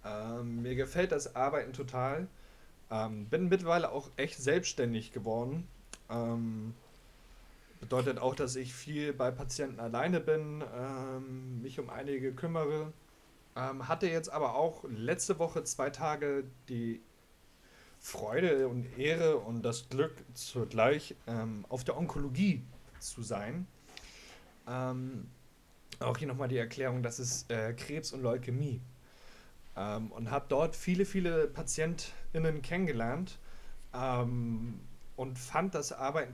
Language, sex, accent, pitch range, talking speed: German, male, German, 120-150 Hz, 120 wpm